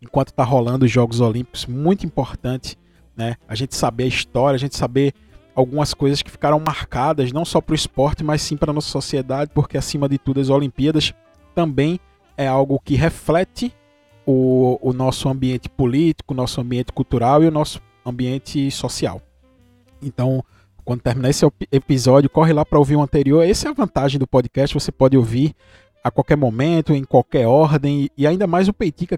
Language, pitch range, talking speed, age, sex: Portuguese, 125-155 Hz, 185 wpm, 20-39, male